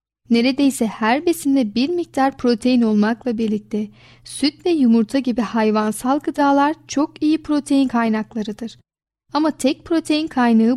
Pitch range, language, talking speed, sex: 225-275 Hz, Turkish, 125 wpm, female